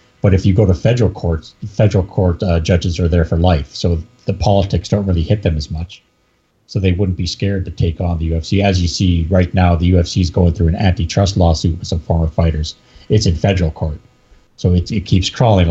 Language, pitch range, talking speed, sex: English, 85-100 Hz, 230 wpm, male